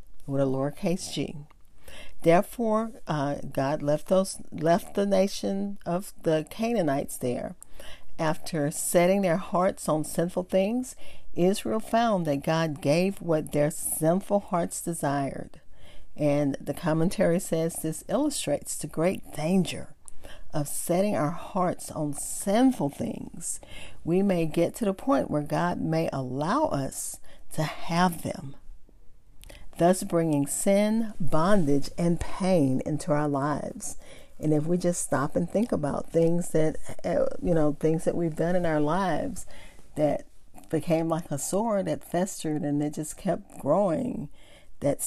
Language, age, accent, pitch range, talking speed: English, 50-69, American, 150-190 Hz, 140 wpm